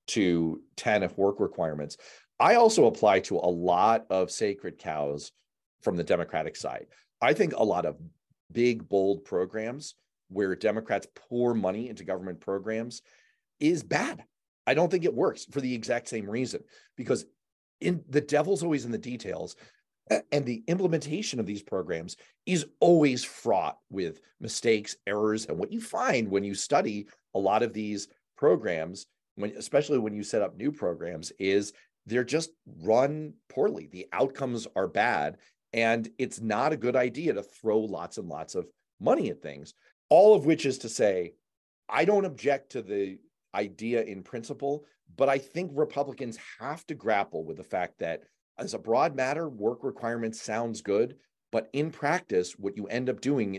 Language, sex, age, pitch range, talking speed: English, male, 40-59, 105-145 Hz, 165 wpm